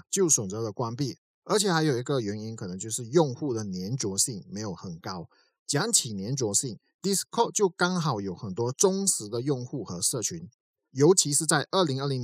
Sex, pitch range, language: male, 115-160 Hz, Chinese